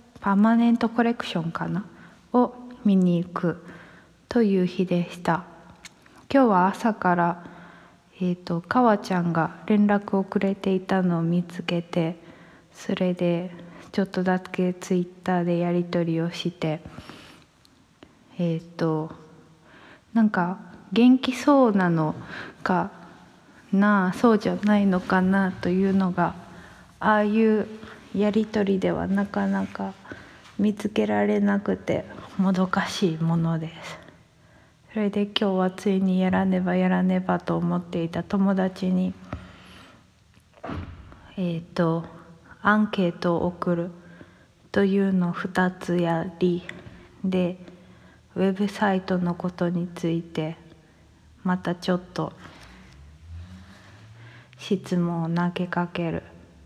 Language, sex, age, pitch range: English, female, 20-39, 170-195 Hz